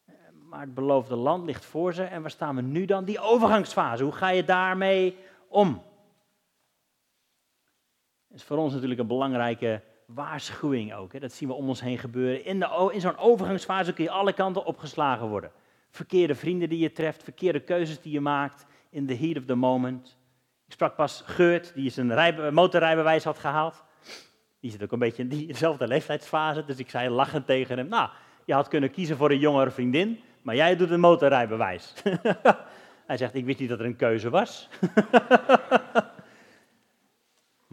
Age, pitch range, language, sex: 40-59, 130-180 Hz, Dutch, male